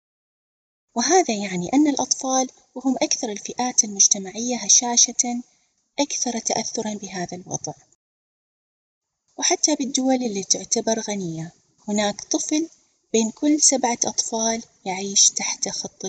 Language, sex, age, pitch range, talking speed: Arabic, female, 20-39, 195-245 Hz, 100 wpm